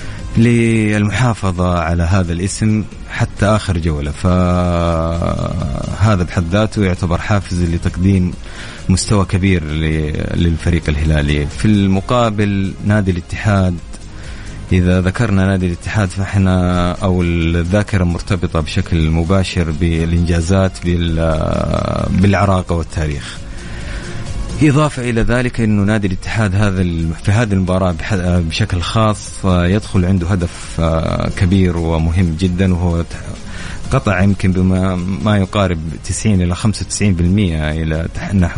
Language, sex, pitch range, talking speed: English, male, 85-100 Hz, 100 wpm